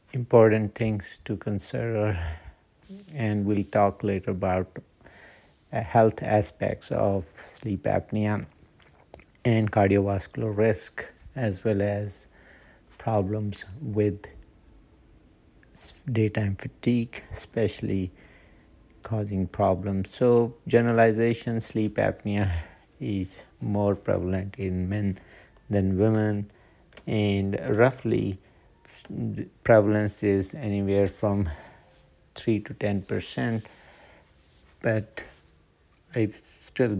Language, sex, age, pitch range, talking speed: English, male, 50-69, 95-110 Hz, 80 wpm